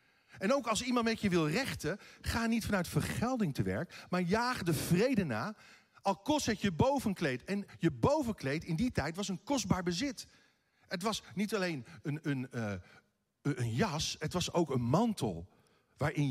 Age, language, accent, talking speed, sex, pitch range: 50-69, Dutch, Dutch, 180 wpm, male, 125-195 Hz